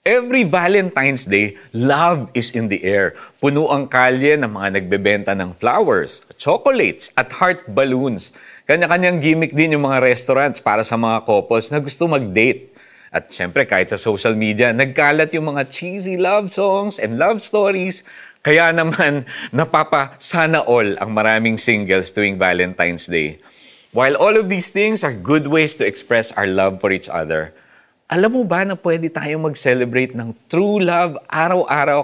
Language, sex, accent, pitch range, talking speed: Filipino, male, native, 115-165 Hz, 155 wpm